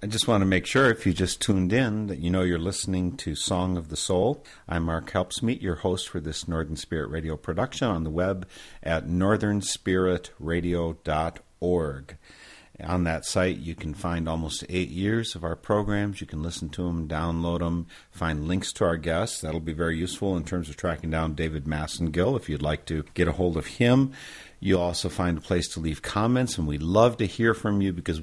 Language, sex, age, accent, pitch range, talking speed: English, male, 50-69, American, 80-95 Hz, 205 wpm